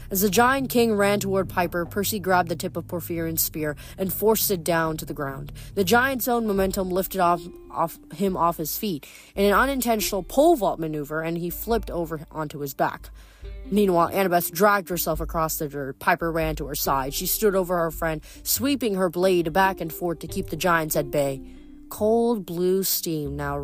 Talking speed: 200 wpm